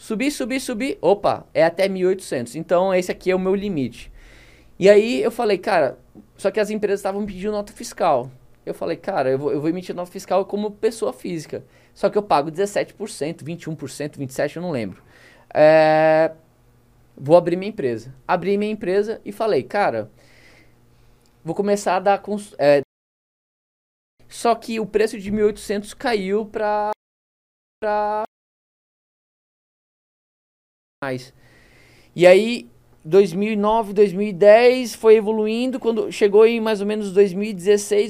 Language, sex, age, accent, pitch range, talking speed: Portuguese, male, 20-39, Brazilian, 165-215 Hz, 130 wpm